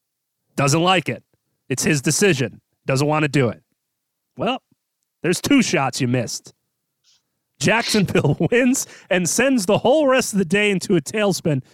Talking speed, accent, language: 155 wpm, American, English